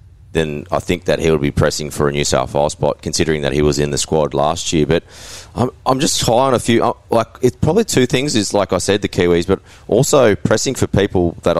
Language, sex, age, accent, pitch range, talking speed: English, male, 20-39, Australian, 85-105 Hz, 250 wpm